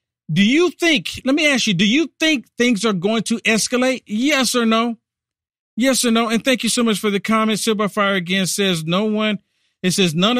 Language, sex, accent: English, male, American